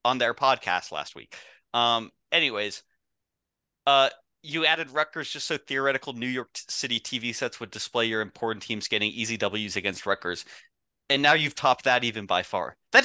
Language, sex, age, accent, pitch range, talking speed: English, male, 30-49, American, 120-170 Hz, 175 wpm